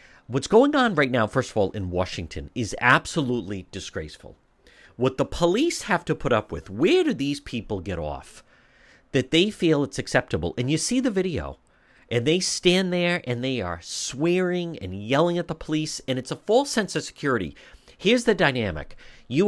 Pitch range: 120-175 Hz